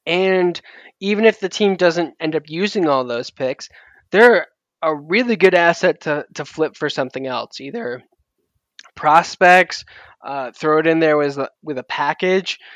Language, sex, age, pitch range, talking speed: English, male, 10-29, 145-190 Hz, 160 wpm